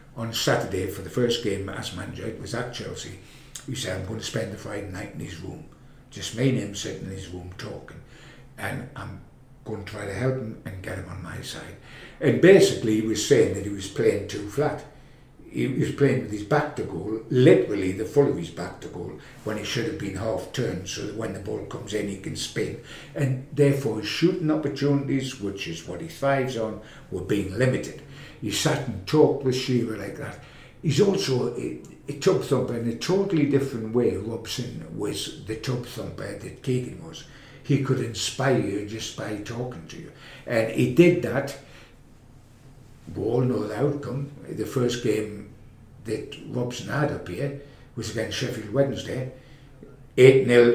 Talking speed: 190 wpm